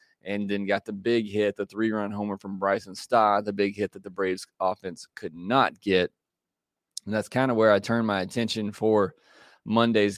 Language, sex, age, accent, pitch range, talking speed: English, male, 20-39, American, 105-120 Hz, 195 wpm